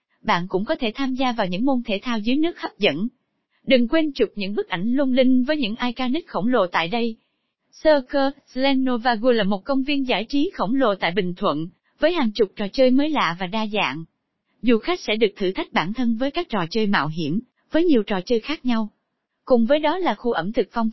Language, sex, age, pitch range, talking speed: Vietnamese, female, 20-39, 210-280 Hz, 230 wpm